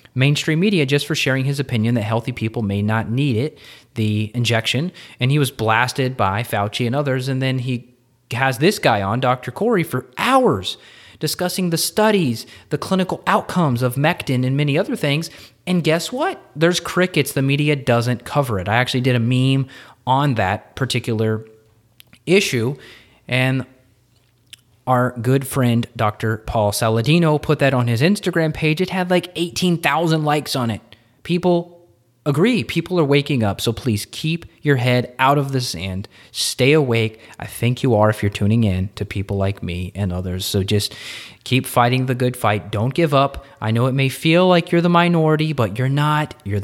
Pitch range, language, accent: 110-150 Hz, English, American